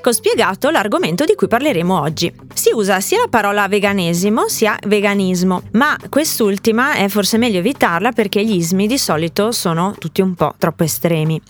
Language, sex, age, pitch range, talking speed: Italian, female, 20-39, 185-235 Hz, 165 wpm